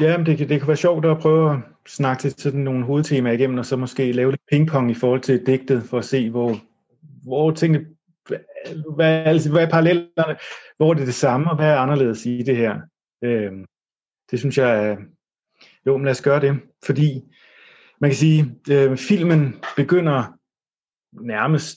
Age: 30-49